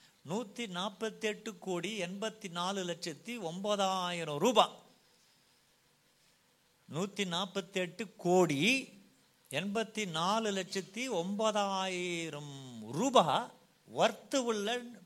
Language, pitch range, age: Tamil, 175-230 Hz, 50-69